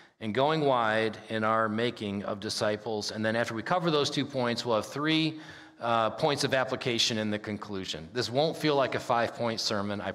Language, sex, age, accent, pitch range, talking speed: English, male, 40-59, American, 110-150 Hz, 200 wpm